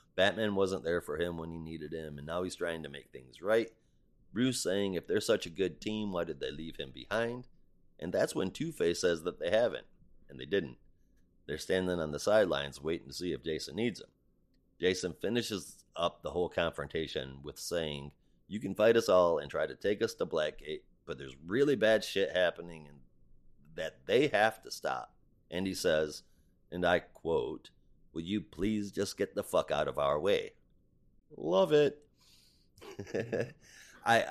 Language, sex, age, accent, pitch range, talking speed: English, male, 30-49, American, 80-105 Hz, 185 wpm